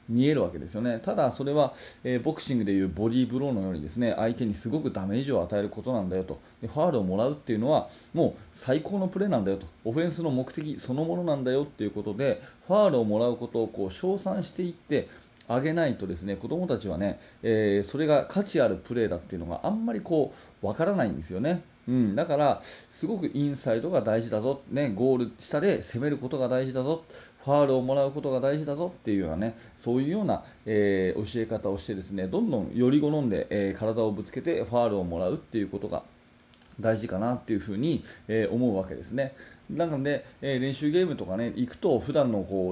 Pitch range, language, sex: 105-140 Hz, Japanese, male